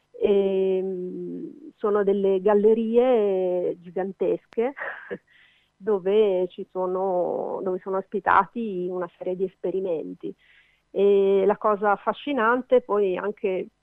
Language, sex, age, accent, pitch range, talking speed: Italian, female, 40-59, native, 185-220 Hz, 90 wpm